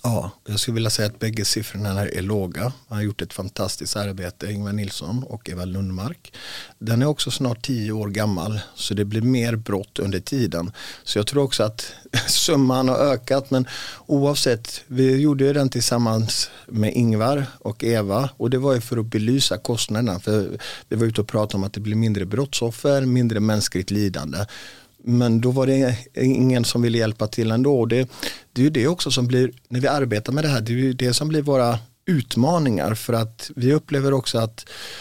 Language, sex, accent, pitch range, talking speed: Swedish, male, native, 110-135 Hz, 195 wpm